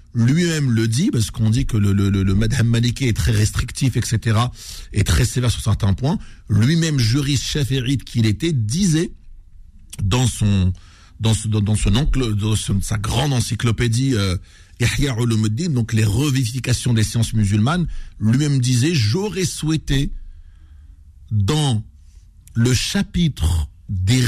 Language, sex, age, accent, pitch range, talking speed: French, male, 50-69, French, 105-140 Hz, 135 wpm